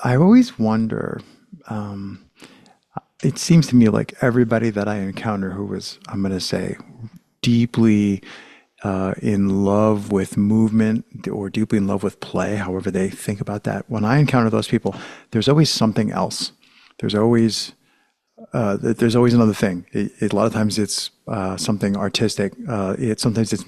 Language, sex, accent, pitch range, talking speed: English, male, American, 100-125 Hz, 160 wpm